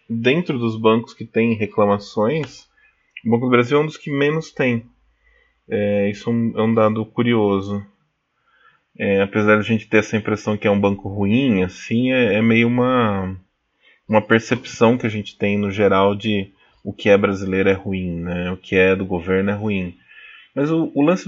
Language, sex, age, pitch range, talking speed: Portuguese, male, 20-39, 100-125 Hz, 190 wpm